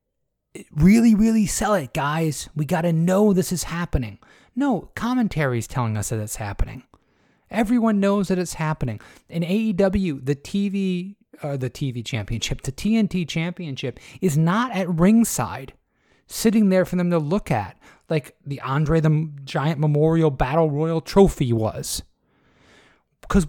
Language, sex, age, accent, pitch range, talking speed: English, male, 30-49, American, 130-175 Hz, 150 wpm